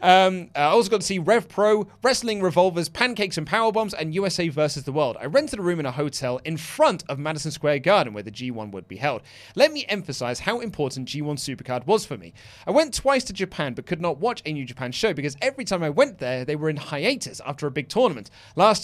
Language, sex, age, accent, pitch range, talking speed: English, male, 30-49, British, 145-220 Hz, 240 wpm